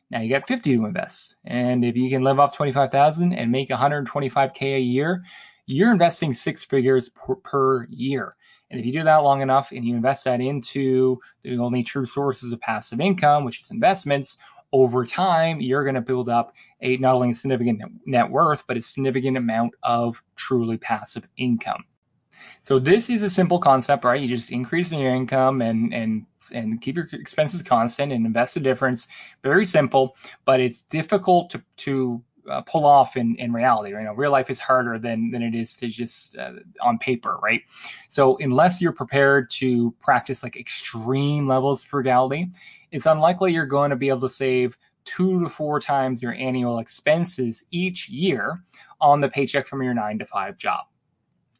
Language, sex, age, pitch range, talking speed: English, male, 20-39, 125-145 Hz, 195 wpm